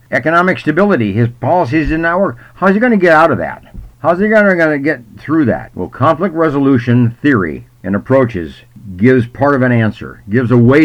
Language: English